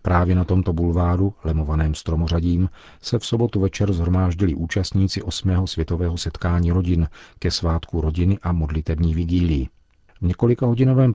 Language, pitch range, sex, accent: Czech, 80-95 Hz, male, native